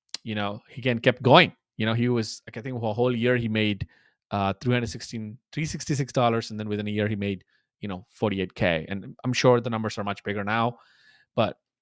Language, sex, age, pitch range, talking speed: English, male, 20-39, 110-130 Hz, 215 wpm